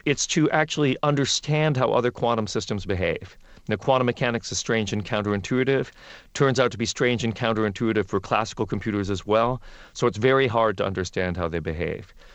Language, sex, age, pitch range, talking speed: English, male, 40-59, 100-120 Hz, 180 wpm